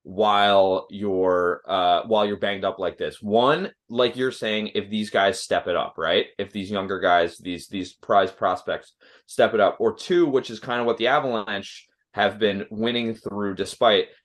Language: English